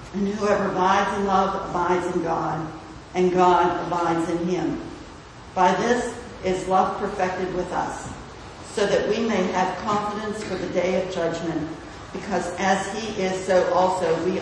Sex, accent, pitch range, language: female, American, 175-200 Hz, English